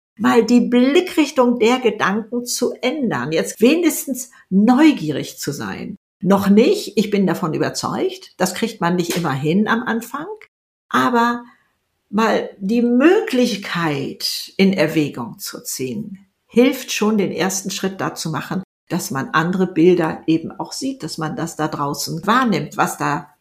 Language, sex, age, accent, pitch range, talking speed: German, female, 60-79, German, 175-255 Hz, 145 wpm